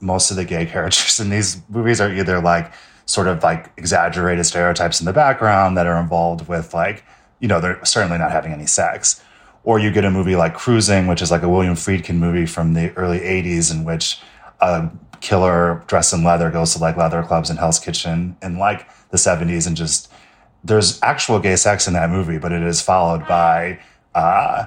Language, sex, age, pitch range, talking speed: English, male, 30-49, 85-105 Hz, 205 wpm